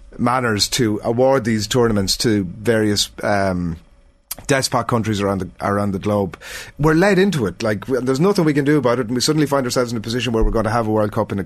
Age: 30-49